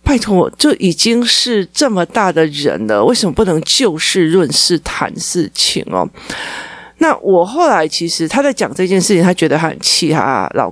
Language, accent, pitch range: Chinese, native, 155-220 Hz